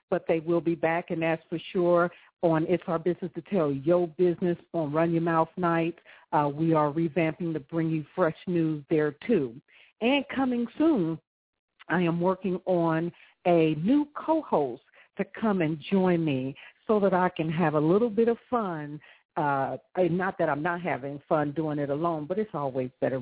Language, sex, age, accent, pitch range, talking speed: English, female, 50-69, American, 145-175 Hz, 185 wpm